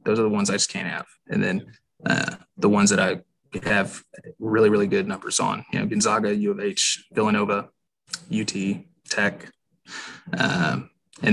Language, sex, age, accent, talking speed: English, male, 20-39, American, 170 wpm